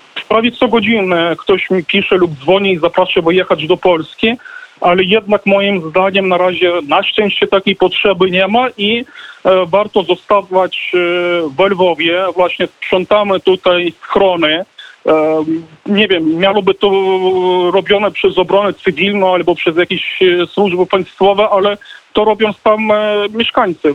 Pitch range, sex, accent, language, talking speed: 180-210 Hz, male, native, Polish, 130 wpm